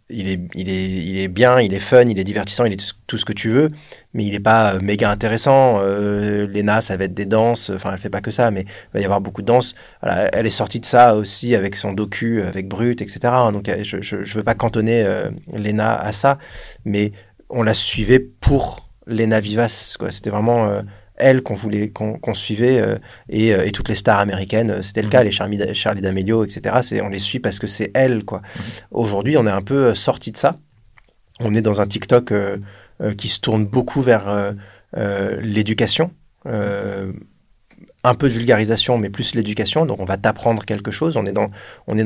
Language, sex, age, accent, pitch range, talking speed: French, male, 30-49, French, 100-120 Hz, 210 wpm